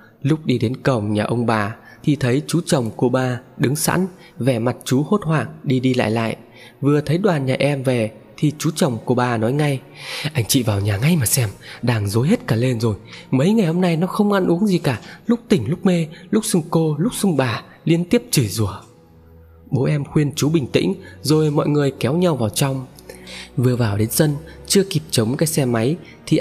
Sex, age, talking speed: male, 20-39, 225 wpm